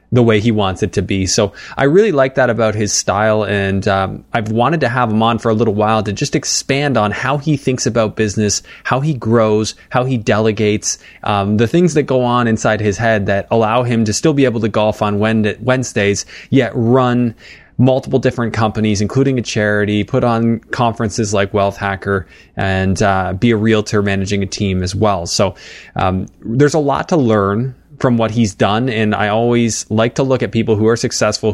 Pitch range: 105-120 Hz